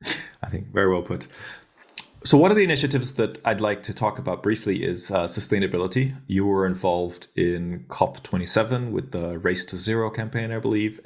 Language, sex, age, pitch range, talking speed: English, male, 30-49, 90-110 Hz, 180 wpm